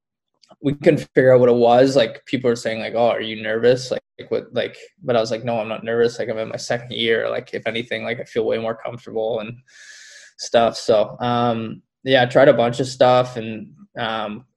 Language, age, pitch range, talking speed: English, 20-39, 110-125 Hz, 225 wpm